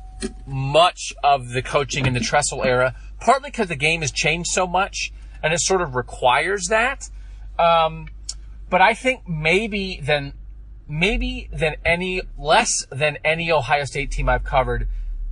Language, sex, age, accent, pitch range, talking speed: English, male, 30-49, American, 110-165 Hz, 155 wpm